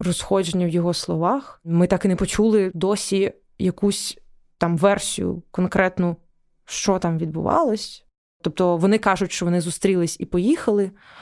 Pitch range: 180-210 Hz